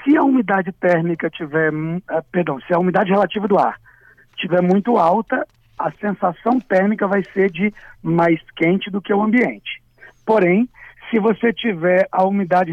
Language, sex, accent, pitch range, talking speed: Portuguese, male, Brazilian, 180-235 Hz, 155 wpm